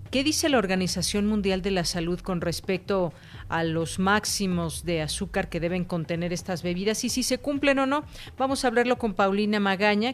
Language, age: Spanish, 40-59